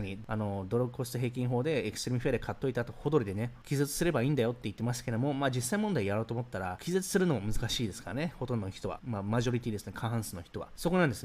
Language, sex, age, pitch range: Japanese, male, 20-39, 110-150 Hz